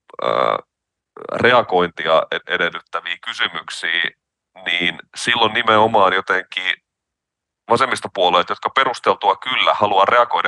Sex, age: male, 30-49